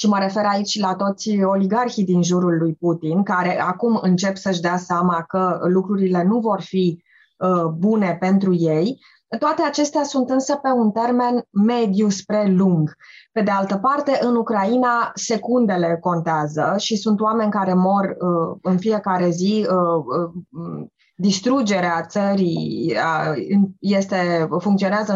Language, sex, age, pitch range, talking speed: Romanian, female, 20-39, 185-230 Hz, 130 wpm